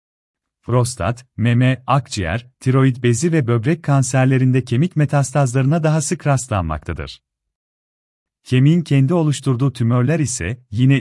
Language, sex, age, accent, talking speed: Turkish, male, 40-59, native, 105 wpm